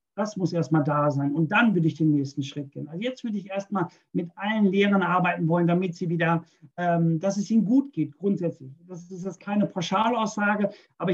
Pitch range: 160-195 Hz